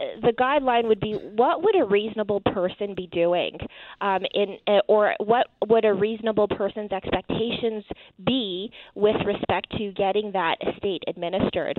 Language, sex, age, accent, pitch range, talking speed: English, female, 20-39, American, 185-225 Hz, 145 wpm